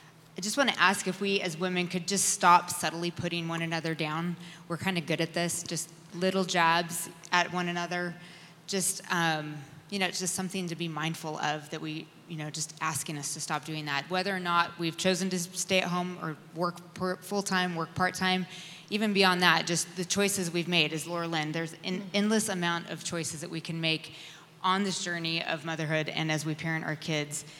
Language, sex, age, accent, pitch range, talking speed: English, female, 20-39, American, 160-180 Hz, 210 wpm